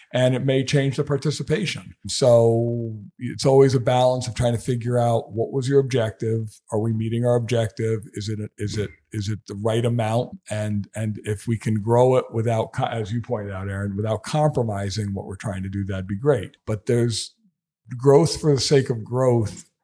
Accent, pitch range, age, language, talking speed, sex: American, 105-125 Hz, 50-69, English, 195 wpm, male